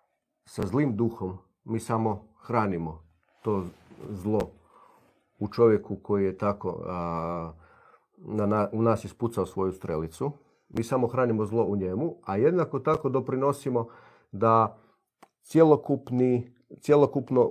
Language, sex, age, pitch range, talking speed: Croatian, male, 40-59, 105-125 Hz, 110 wpm